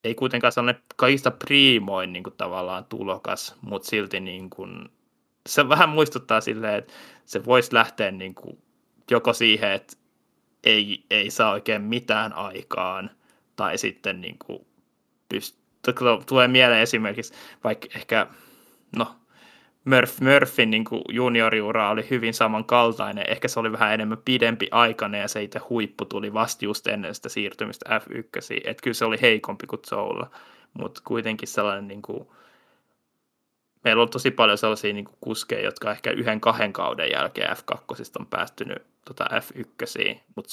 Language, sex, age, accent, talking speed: Finnish, male, 20-39, native, 135 wpm